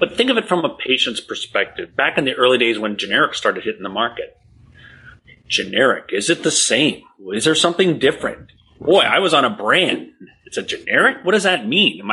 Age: 30-49